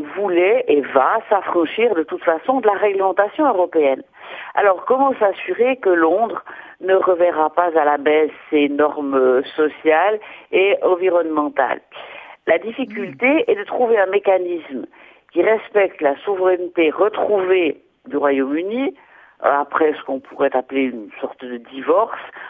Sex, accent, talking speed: female, French, 135 wpm